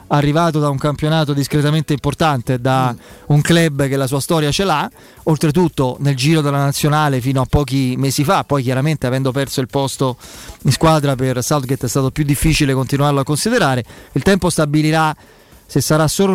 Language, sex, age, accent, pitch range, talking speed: Italian, male, 30-49, native, 140-170 Hz, 175 wpm